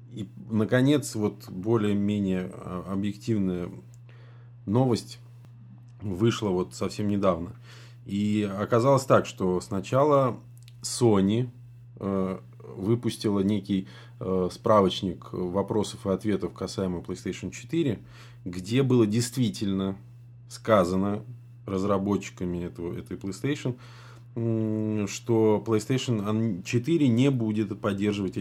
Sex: male